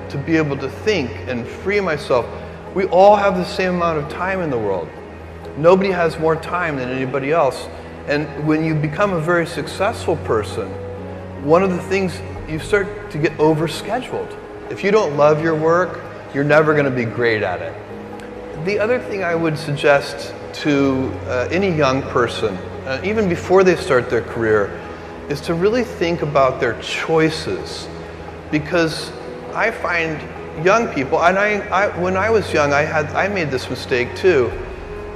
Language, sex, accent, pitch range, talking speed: English, male, American, 125-175 Hz, 170 wpm